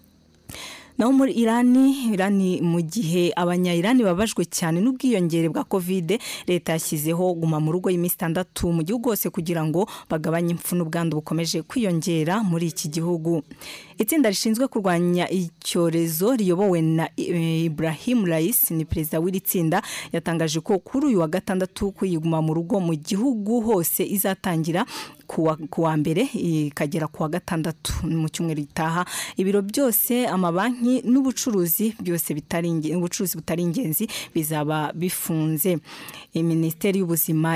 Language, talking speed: Indonesian, 115 wpm